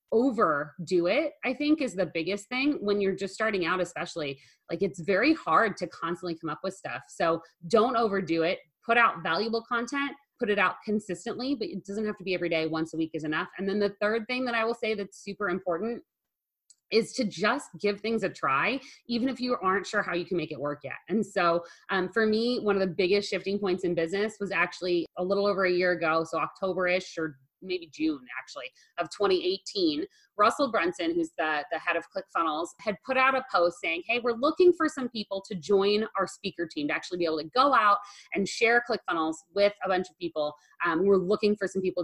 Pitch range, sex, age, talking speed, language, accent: 175-235 Hz, female, 30-49, 225 wpm, English, American